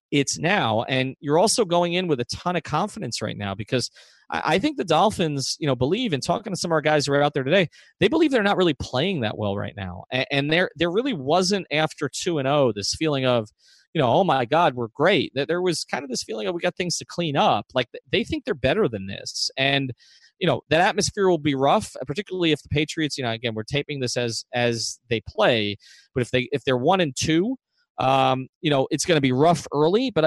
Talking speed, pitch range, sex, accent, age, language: 250 wpm, 120-170 Hz, male, American, 30-49, English